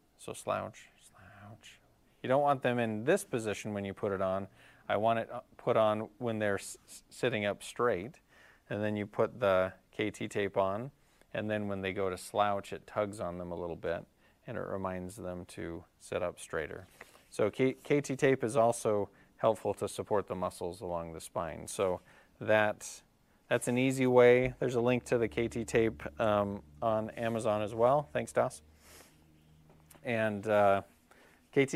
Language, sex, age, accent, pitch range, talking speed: English, male, 30-49, American, 95-125 Hz, 170 wpm